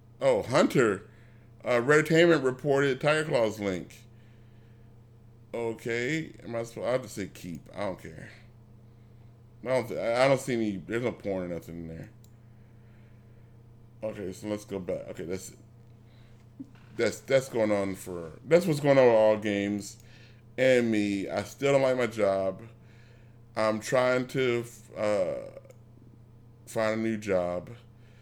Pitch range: 105-120 Hz